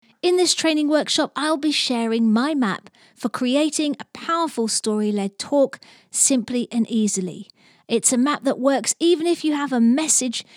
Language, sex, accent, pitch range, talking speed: English, female, British, 210-285 Hz, 170 wpm